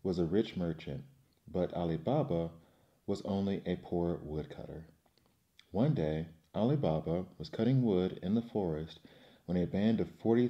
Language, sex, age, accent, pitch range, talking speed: English, male, 40-59, American, 80-110 Hz, 155 wpm